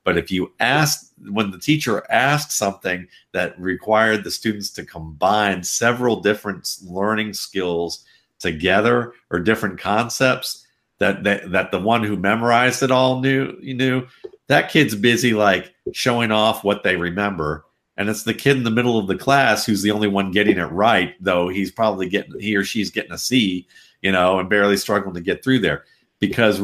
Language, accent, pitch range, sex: English, American, 95-115 Hz, male